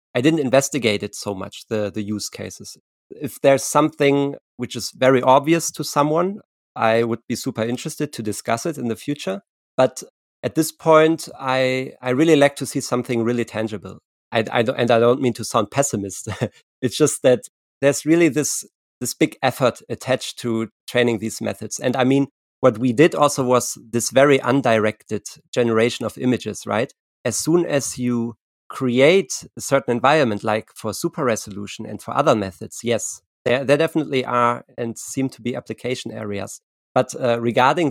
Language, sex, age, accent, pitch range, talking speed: English, male, 40-59, German, 115-145 Hz, 175 wpm